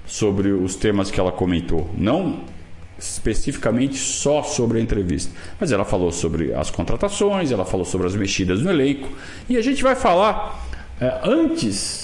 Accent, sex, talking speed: Brazilian, male, 160 wpm